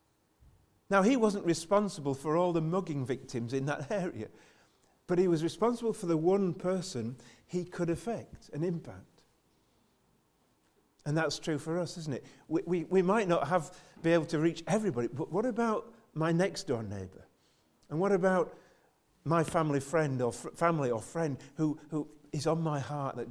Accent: British